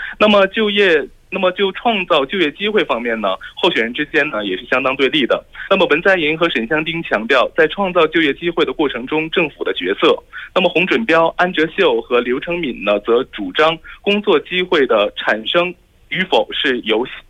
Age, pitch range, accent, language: 20-39, 155-210 Hz, Chinese, Korean